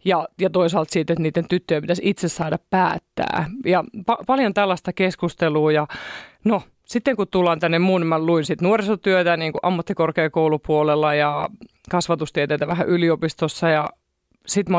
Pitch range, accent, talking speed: 160-185 Hz, native, 140 wpm